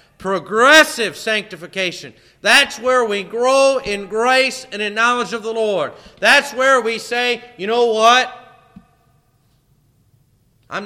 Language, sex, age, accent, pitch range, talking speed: English, male, 40-59, American, 165-235 Hz, 120 wpm